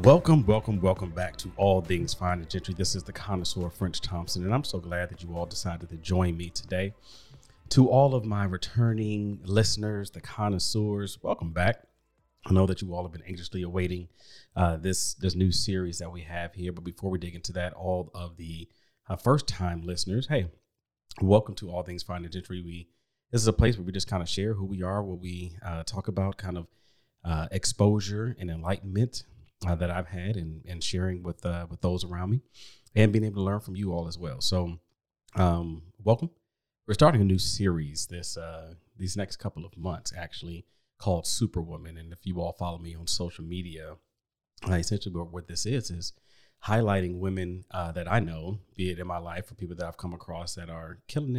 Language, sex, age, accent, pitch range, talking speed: English, male, 30-49, American, 85-105 Hz, 205 wpm